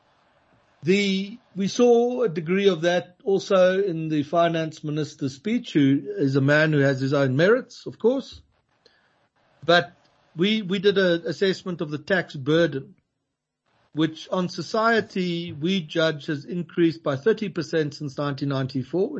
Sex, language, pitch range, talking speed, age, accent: male, English, 135-175 Hz, 140 wpm, 60-79, South African